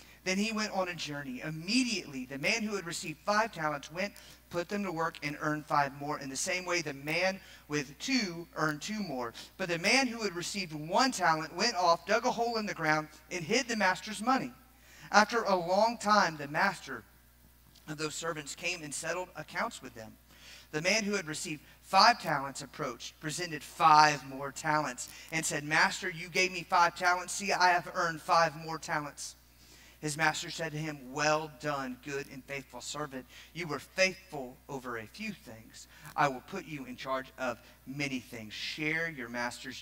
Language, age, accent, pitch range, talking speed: English, 40-59, American, 140-205 Hz, 190 wpm